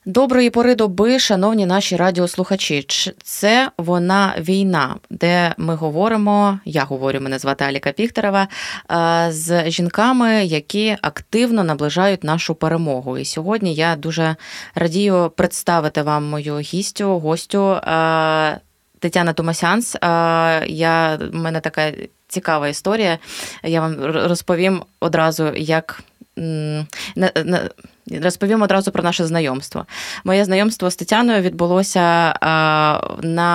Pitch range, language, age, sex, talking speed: 160-195 Hz, Ukrainian, 20-39, female, 105 wpm